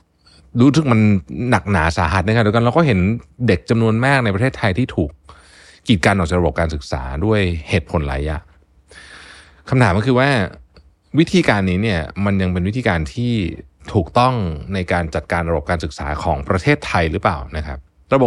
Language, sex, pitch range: Thai, male, 80-110 Hz